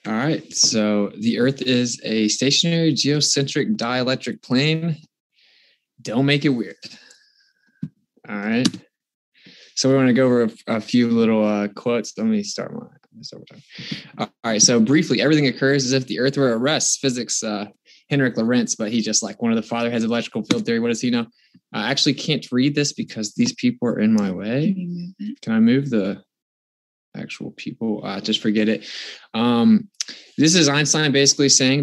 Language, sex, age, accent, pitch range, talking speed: English, male, 20-39, American, 120-155 Hz, 185 wpm